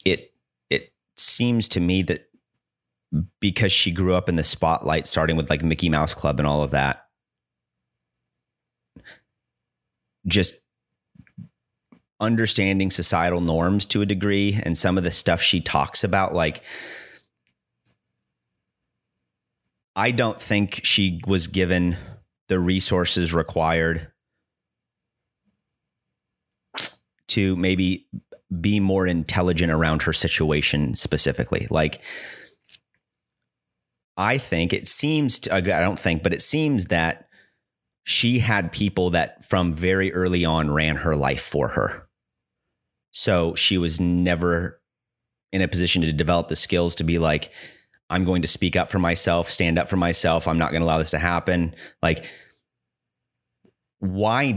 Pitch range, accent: 80-95 Hz, American